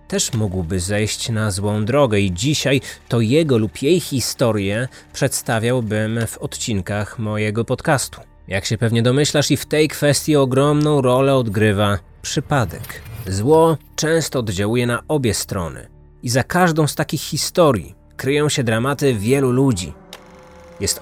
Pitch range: 105-150 Hz